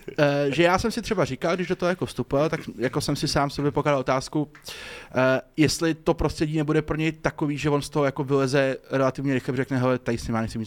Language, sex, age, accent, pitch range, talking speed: Czech, male, 20-39, native, 120-135 Hz, 245 wpm